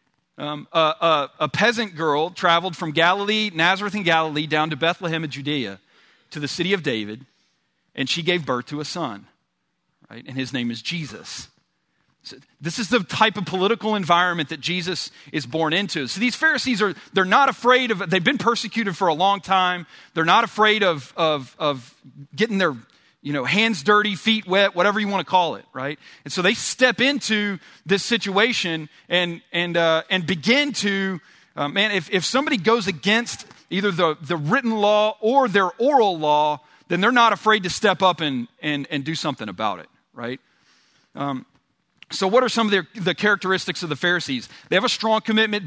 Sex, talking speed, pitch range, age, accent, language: male, 185 wpm, 155-215 Hz, 40-59, American, English